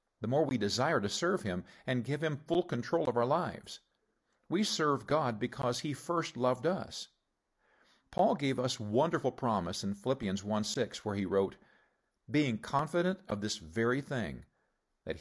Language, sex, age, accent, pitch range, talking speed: English, male, 50-69, American, 105-155 Hz, 160 wpm